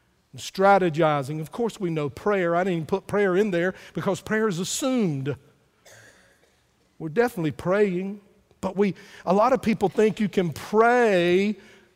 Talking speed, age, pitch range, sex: 145 wpm, 50-69, 180-235 Hz, male